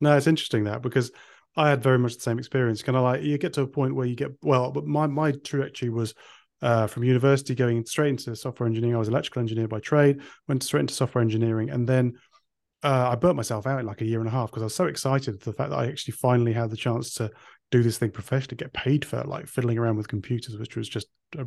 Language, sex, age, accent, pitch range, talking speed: English, male, 30-49, British, 120-145 Hz, 270 wpm